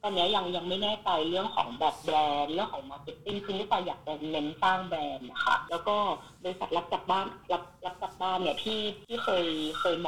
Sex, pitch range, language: female, 155-200 Hz, Thai